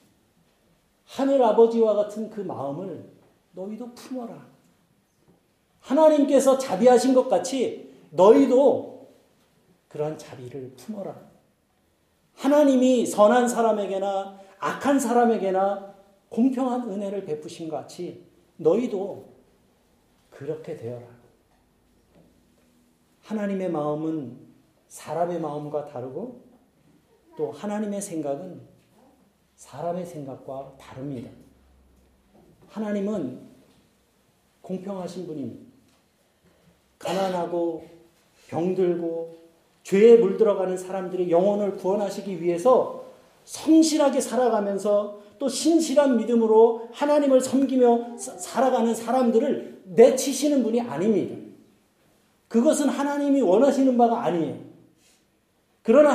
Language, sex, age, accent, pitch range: Korean, male, 40-59, native, 165-250 Hz